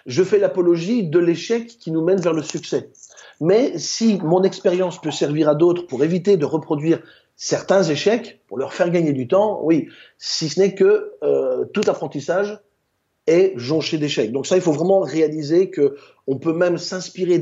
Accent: French